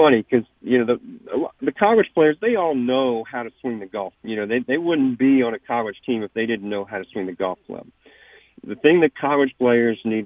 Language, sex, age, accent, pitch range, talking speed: English, male, 40-59, American, 105-125 Hz, 240 wpm